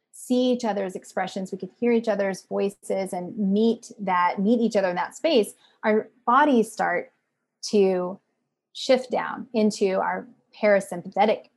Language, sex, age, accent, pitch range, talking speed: English, female, 30-49, American, 185-230 Hz, 145 wpm